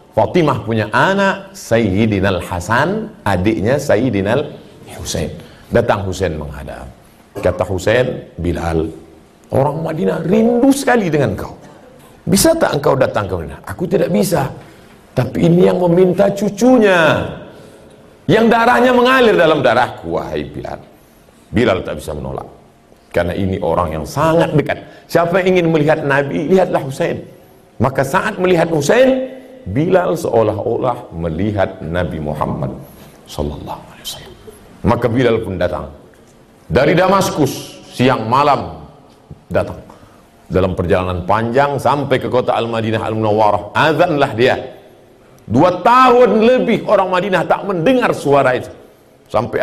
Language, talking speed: Indonesian, 120 wpm